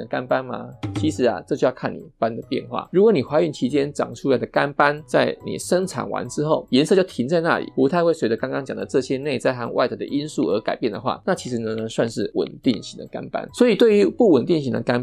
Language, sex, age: Chinese, male, 20-39